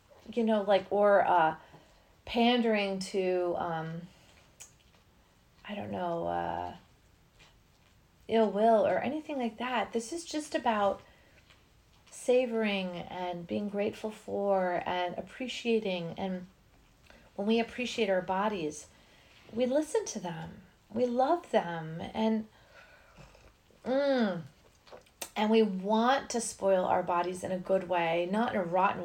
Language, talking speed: English, 120 wpm